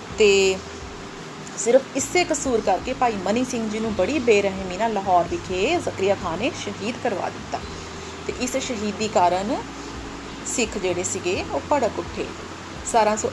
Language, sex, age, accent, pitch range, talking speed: Hindi, female, 30-49, native, 205-280 Hz, 140 wpm